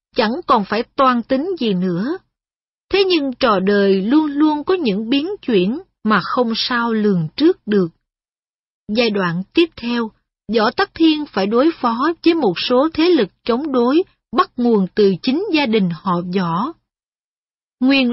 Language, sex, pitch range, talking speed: Vietnamese, female, 205-295 Hz, 160 wpm